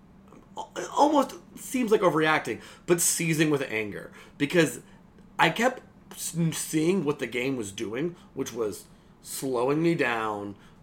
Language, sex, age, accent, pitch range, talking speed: English, male, 30-49, American, 125-185 Hz, 120 wpm